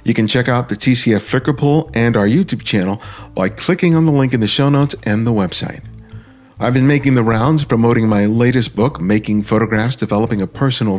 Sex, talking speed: male, 200 wpm